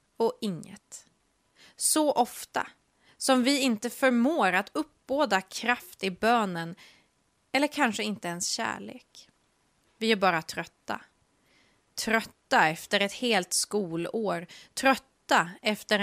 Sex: female